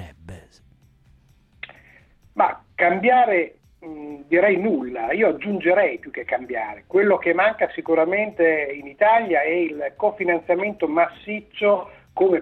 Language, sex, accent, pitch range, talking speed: Italian, male, native, 155-195 Hz, 100 wpm